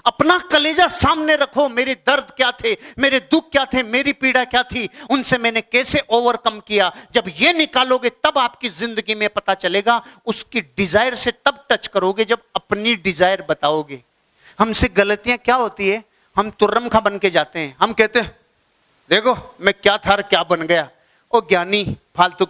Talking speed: 175 wpm